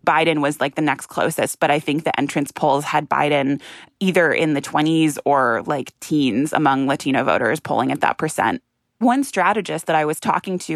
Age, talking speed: 20-39, 195 wpm